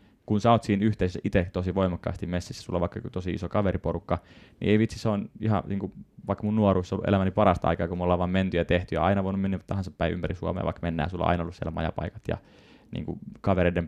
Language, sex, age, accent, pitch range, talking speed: Finnish, male, 20-39, native, 90-105 Hz, 240 wpm